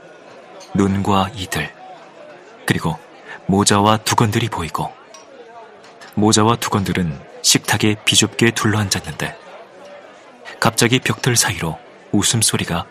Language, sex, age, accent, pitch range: Korean, male, 30-49, native, 95-120 Hz